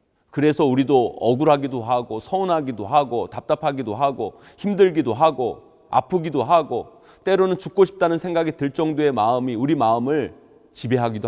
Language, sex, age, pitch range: Korean, male, 30-49, 120-165 Hz